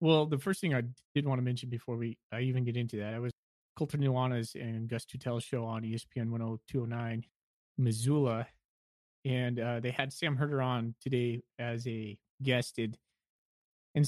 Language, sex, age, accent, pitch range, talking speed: English, male, 30-49, American, 115-140 Hz, 165 wpm